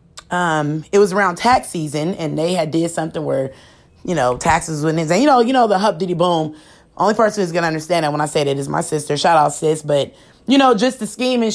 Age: 20-39